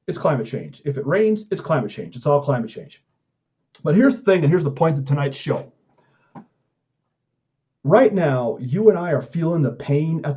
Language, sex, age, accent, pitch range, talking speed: English, male, 40-59, American, 135-175 Hz, 195 wpm